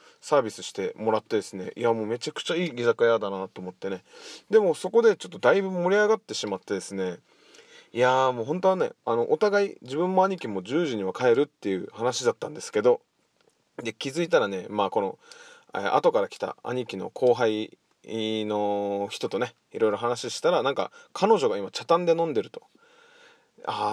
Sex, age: male, 20-39